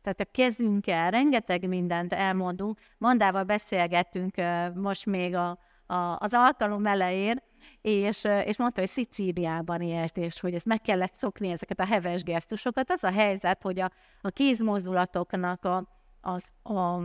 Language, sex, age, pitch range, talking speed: Hungarian, female, 30-49, 185-225 Hz, 145 wpm